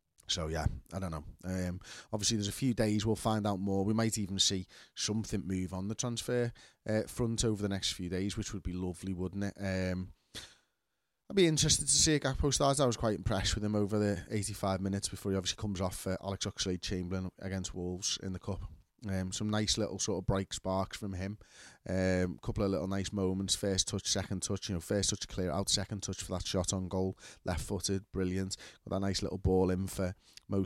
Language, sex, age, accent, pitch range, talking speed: English, male, 30-49, British, 95-110 Hz, 220 wpm